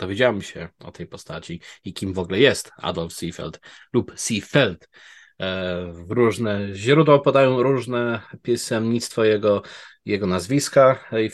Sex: male